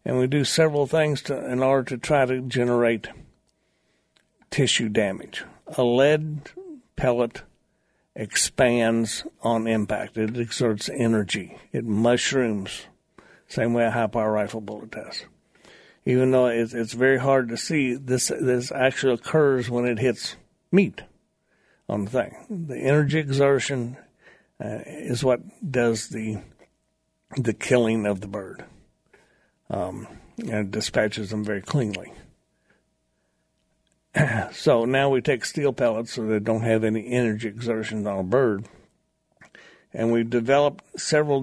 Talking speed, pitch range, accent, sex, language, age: 130 wpm, 115-135 Hz, American, male, English, 60-79